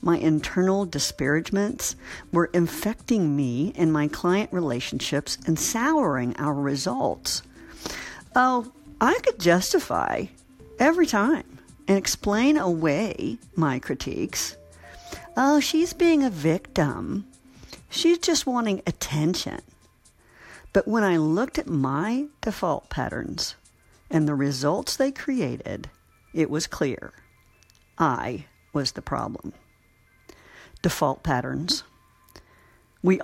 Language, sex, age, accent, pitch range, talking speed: English, female, 60-79, American, 150-215 Hz, 105 wpm